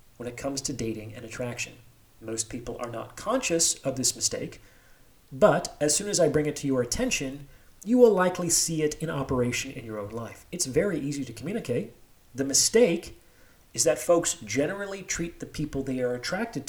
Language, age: English, 40-59